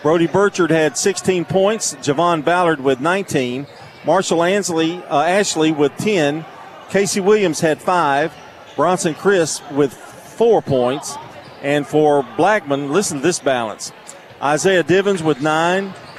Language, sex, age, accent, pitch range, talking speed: English, male, 40-59, American, 145-185 Hz, 130 wpm